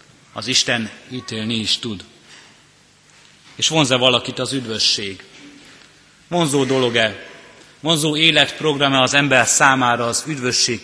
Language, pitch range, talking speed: Hungarian, 120-140 Hz, 105 wpm